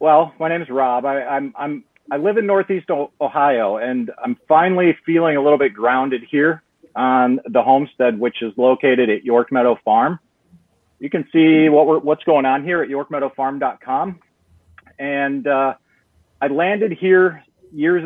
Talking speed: 165 wpm